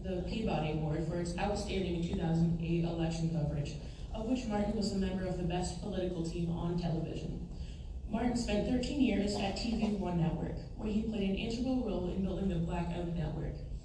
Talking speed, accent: 180 wpm, American